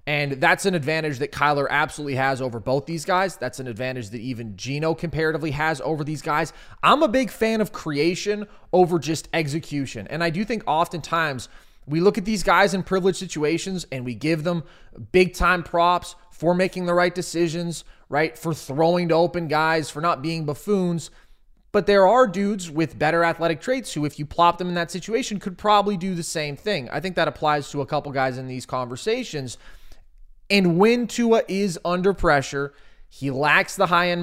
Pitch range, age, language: 145-185 Hz, 20-39, English